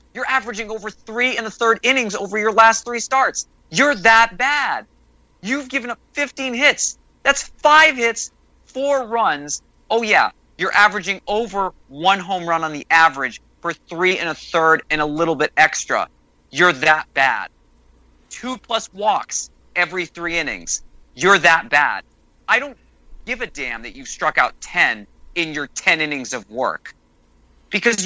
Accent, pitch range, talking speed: American, 150-230 Hz, 165 wpm